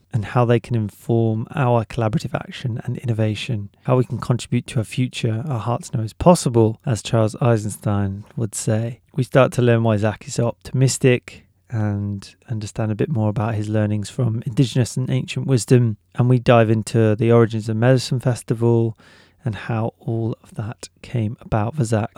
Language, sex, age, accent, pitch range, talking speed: English, male, 30-49, British, 110-130 Hz, 180 wpm